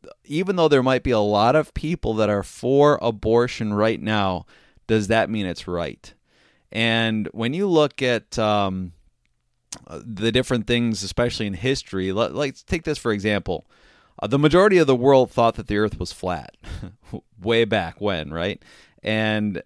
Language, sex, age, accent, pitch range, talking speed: English, male, 30-49, American, 105-125 Hz, 165 wpm